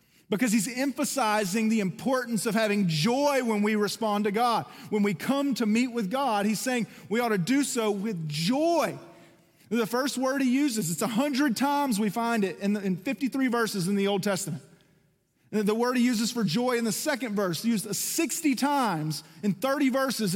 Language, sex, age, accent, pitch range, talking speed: English, male, 40-59, American, 185-245 Hz, 185 wpm